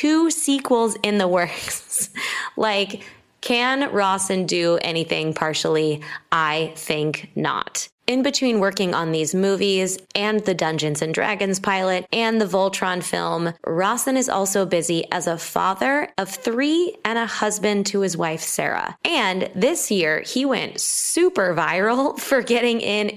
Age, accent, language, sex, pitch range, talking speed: 20-39, American, English, female, 170-210 Hz, 145 wpm